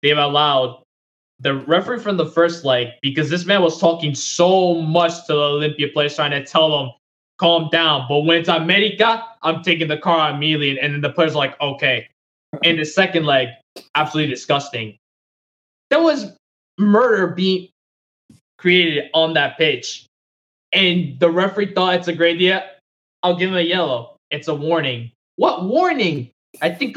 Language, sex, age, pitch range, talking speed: English, male, 20-39, 130-175 Hz, 165 wpm